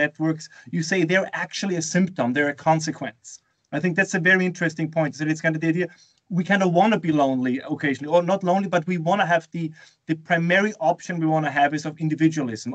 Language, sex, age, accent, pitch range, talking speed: English, male, 30-49, German, 155-185 Hz, 240 wpm